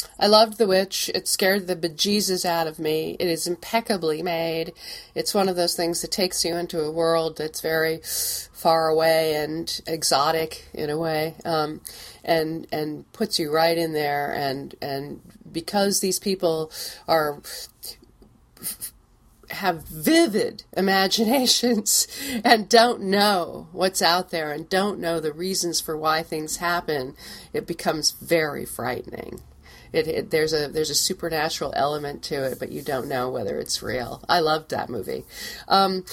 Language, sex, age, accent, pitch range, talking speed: English, female, 40-59, American, 155-190 Hz, 155 wpm